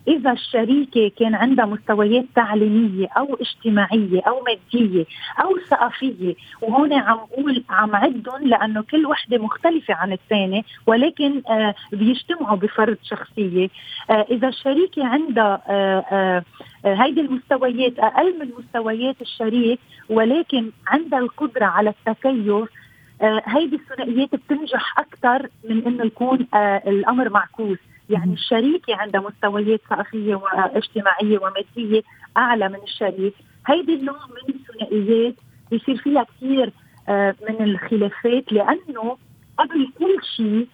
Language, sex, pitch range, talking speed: Arabic, female, 210-260 Hz, 115 wpm